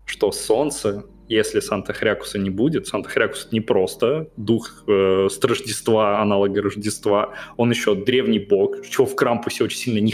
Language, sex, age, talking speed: Russian, male, 20-39, 155 wpm